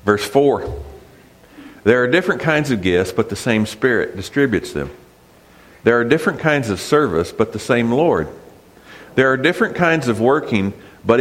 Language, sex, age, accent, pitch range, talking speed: English, male, 50-69, American, 95-140 Hz, 165 wpm